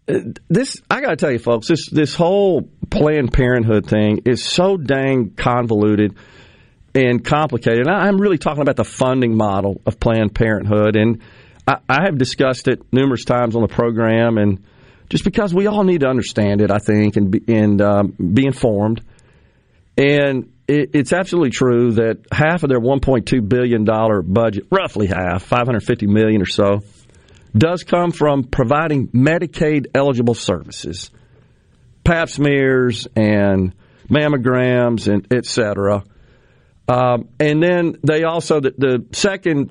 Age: 40-59